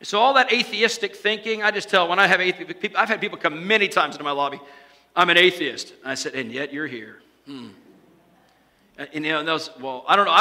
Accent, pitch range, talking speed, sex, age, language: American, 160-220 Hz, 240 wpm, male, 50-69, English